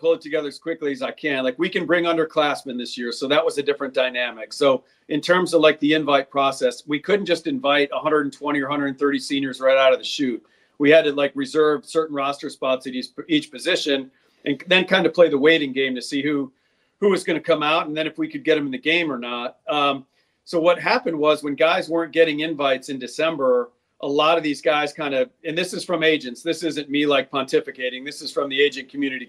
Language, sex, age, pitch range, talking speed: English, male, 40-59, 140-165 Hz, 240 wpm